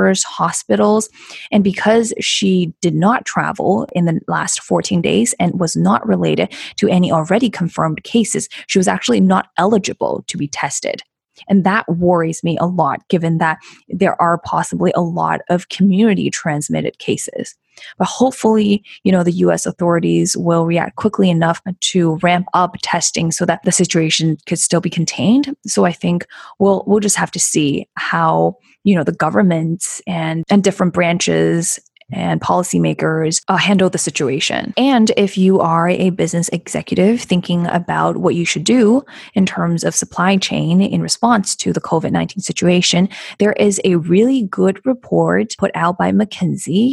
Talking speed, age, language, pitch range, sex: 165 wpm, 20-39, English, 170-205 Hz, female